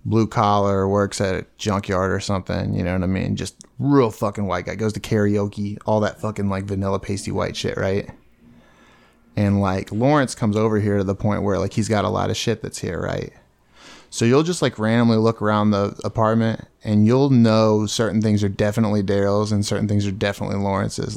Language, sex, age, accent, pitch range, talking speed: English, male, 20-39, American, 100-120 Hz, 205 wpm